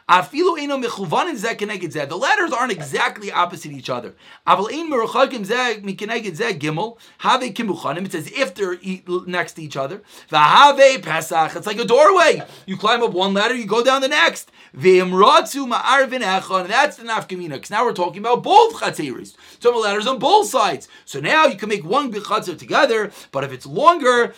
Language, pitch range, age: English, 190-270 Hz, 30-49